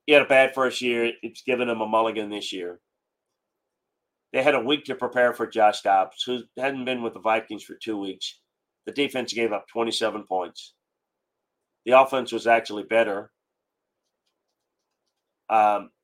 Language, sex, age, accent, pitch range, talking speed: English, male, 40-59, American, 110-135 Hz, 160 wpm